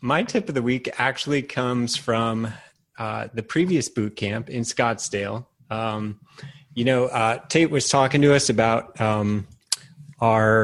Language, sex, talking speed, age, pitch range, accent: English, male, 150 wpm, 30-49, 105-130 Hz, American